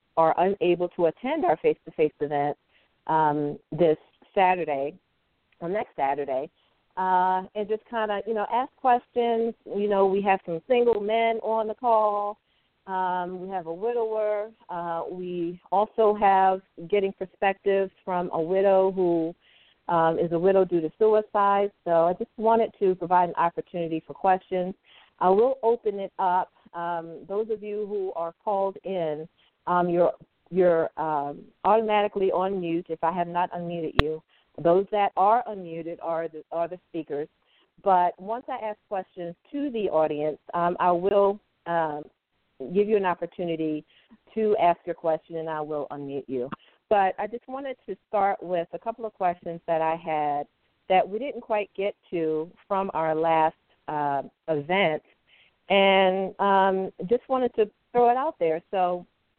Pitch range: 165-210 Hz